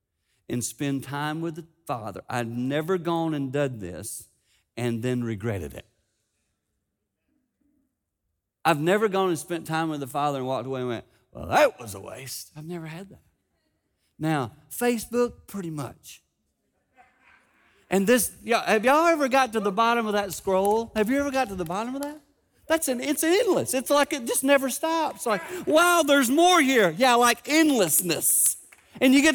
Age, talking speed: 50-69, 180 wpm